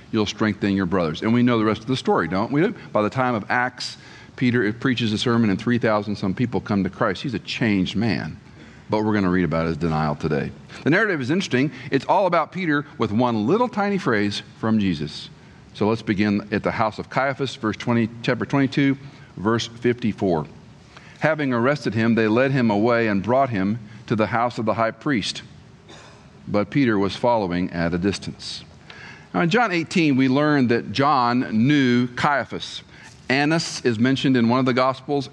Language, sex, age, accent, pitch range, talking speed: English, male, 50-69, American, 105-135 Hz, 190 wpm